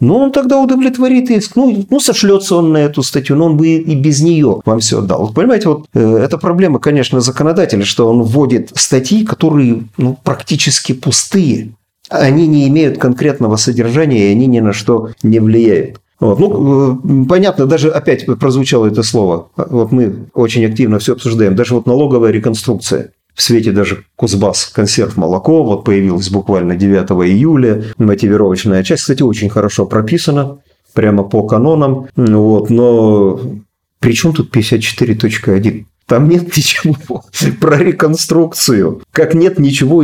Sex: male